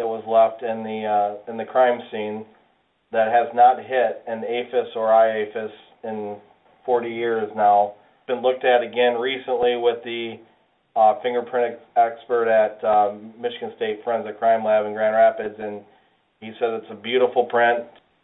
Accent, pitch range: American, 110-125 Hz